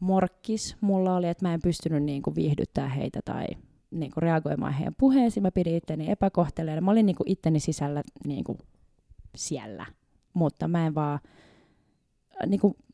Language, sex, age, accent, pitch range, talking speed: Finnish, female, 20-39, native, 160-210 Hz, 140 wpm